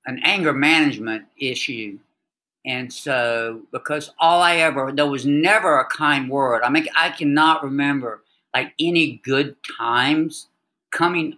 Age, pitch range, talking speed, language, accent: 60-79, 130-160 Hz, 135 wpm, English, American